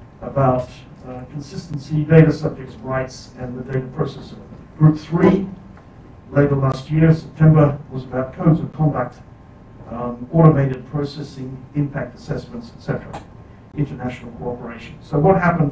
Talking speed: 120 wpm